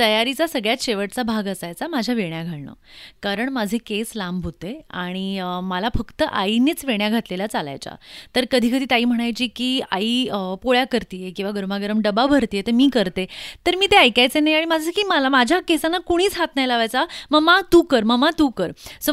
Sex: female